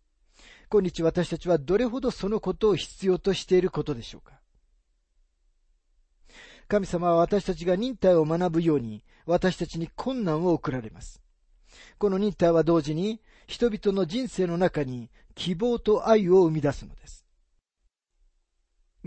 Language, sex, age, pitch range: Japanese, male, 40-59, 125-205 Hz